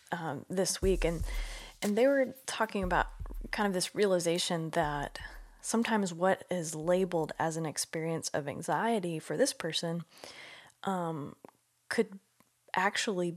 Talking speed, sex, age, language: 130 wpm, female, 20-39, English